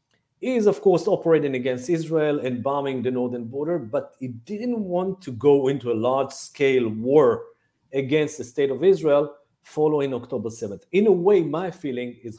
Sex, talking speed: male, 175 wpm